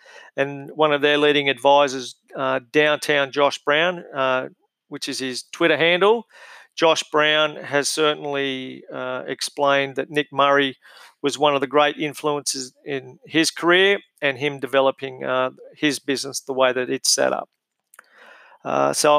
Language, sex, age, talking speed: English, male, 40-59, 150 wpm